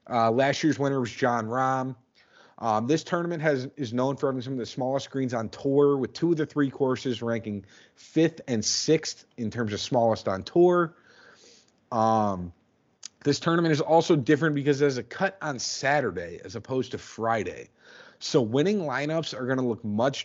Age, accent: 30-49, American